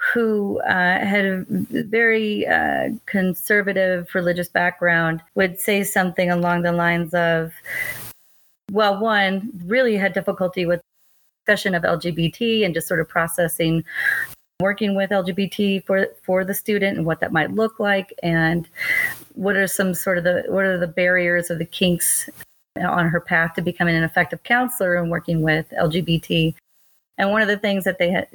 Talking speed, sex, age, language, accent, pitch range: 165 wpm, female, 30-49, English, American, 175-220 Hz